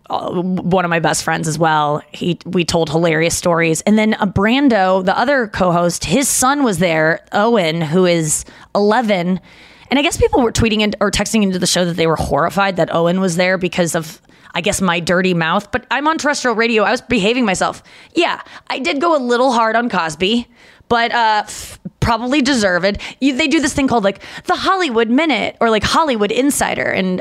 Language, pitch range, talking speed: English, 175-240 Hz, 200 wpm